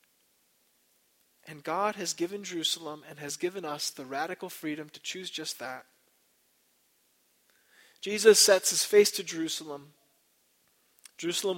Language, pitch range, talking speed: English, 145-180 Hz, 120 wpm